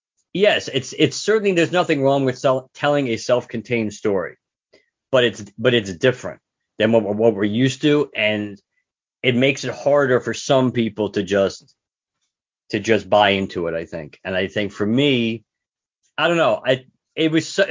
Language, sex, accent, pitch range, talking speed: English, male, American, 95-125 Hz, 180 wpm